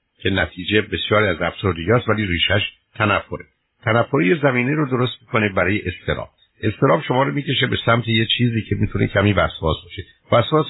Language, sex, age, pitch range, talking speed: Persian, male, 60-79, 95-125 Hz, 165 wpm